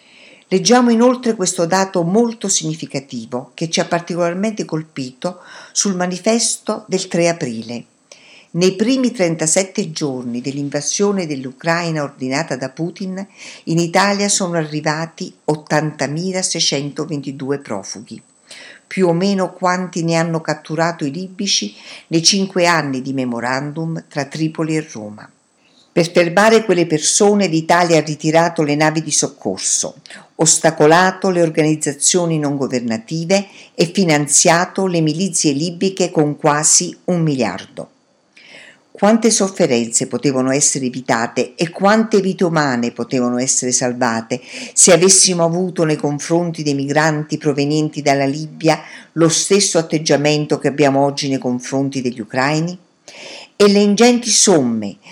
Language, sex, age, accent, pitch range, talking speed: Italian, female, 50-69, native, 140-190 Hz, 120 wpm